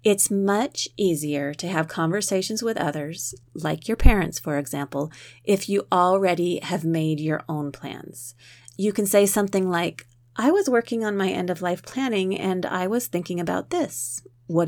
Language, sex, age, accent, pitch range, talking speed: English, female, 30-49, American, 125-190 Hz, 165 wpm